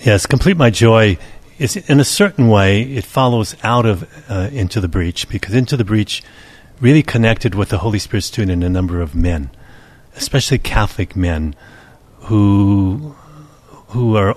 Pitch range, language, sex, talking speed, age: 95-120 Hz, English, male, 165 wpm, 50-69